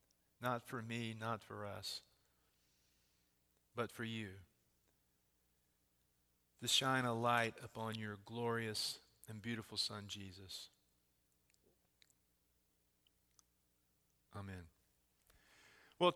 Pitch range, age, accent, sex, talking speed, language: 100-140 Hz, 50-69, American, male, 80 wpm, English